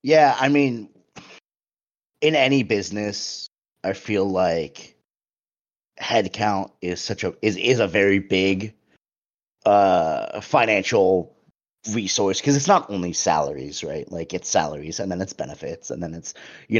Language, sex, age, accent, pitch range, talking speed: English, male, 30-49, American, 95-135 Hz, 135 wpm